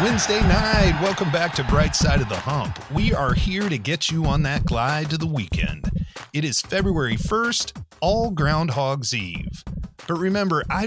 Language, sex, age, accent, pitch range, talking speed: English, male, 30-49, American, 115-160 Hz, 175 wpm